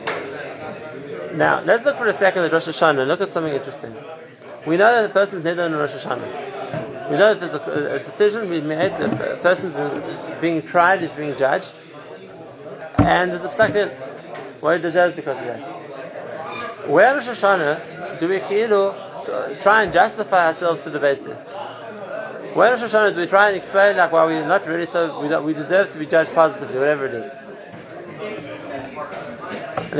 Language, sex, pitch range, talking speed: English, male, 155-195 Hz, 190 wpm